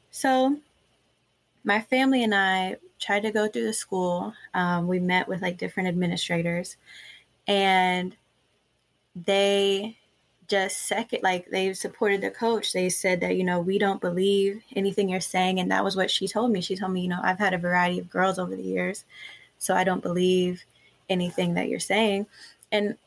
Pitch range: 180-205 Hz